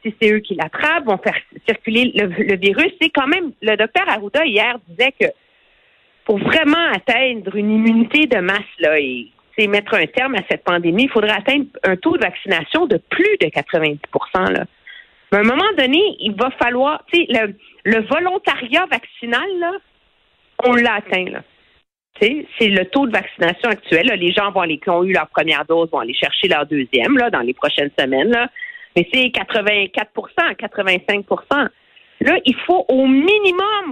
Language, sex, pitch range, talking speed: French, female, 195-270 Hz, 175 wpm